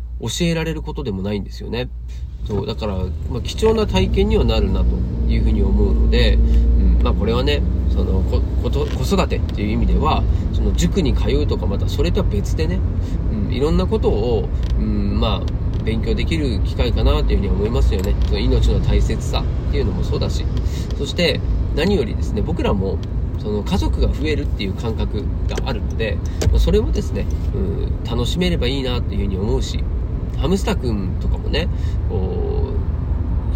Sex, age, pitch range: male, 40-59, 80-105 Hz